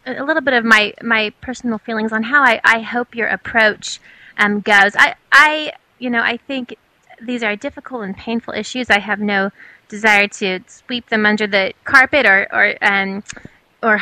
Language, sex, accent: English, female, American